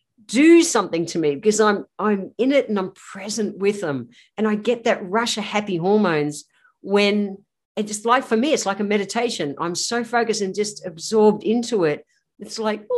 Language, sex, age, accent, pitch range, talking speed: English, female, 50-69, Australian, 175-240 Hz, 195 wpm